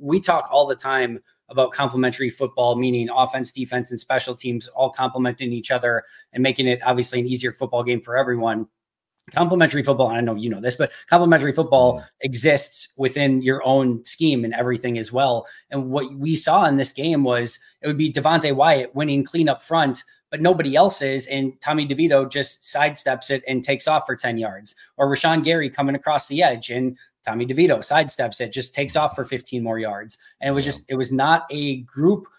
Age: 20-39